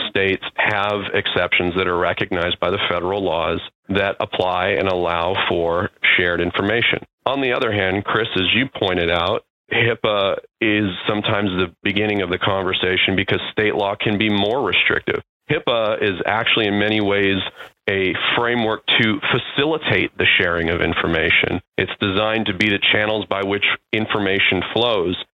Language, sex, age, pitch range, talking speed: English, male, 40-59, 90-105 Hz, 155 wpm